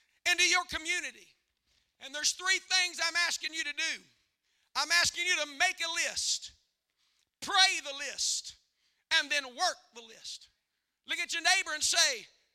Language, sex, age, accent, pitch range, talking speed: English, male, 50-69, American, 295-355 Hz, 160 wpm